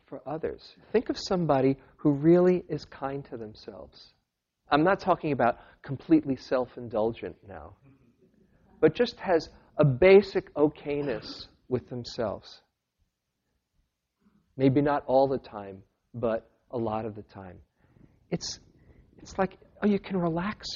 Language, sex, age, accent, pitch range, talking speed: English, male, 50-69, American, 110-150 Hz, 125 wpm